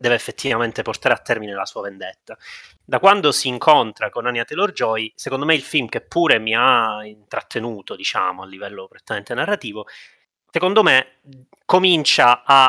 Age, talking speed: 30-49, 160 wpm